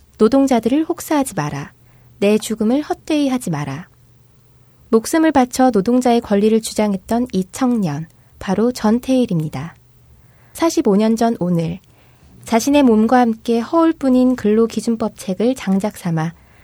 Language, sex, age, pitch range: Korean, female, 20-39, 185-260 Hz